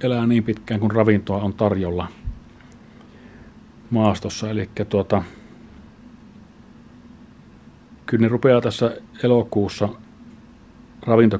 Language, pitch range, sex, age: Finnish, 100-115 Hz, male, 30-49